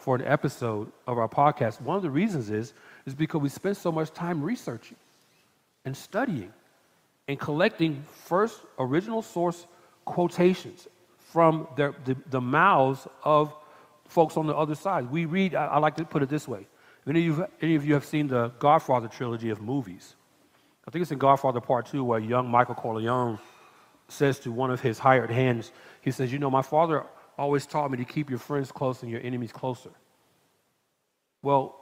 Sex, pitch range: male, 130-170 Hz